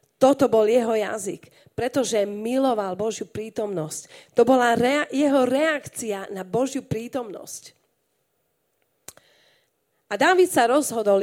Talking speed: 105 wpm